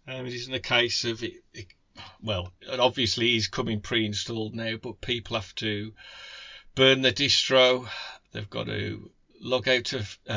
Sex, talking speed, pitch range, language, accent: male, 175 wpm, 110-135 Hz, English, British